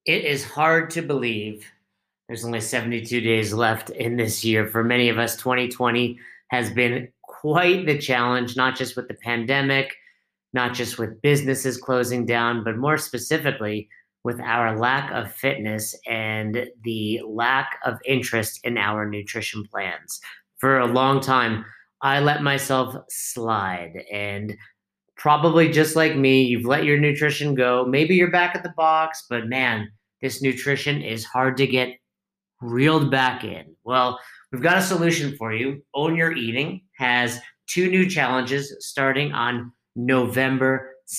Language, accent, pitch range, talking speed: English, American, 120-140 Hz, 150 wpm